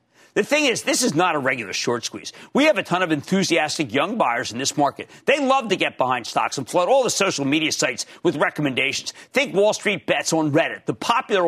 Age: 50-69